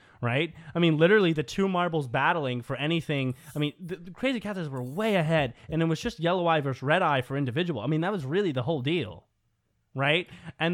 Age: 20-39